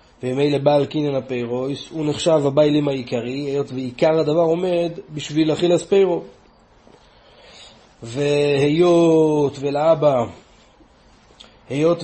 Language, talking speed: Hebrew, 90 wpm